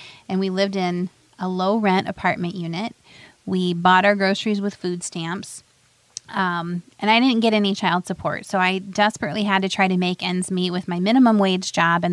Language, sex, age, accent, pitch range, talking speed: English, female, 30-49, American, 175-200 Hz, 195 wpm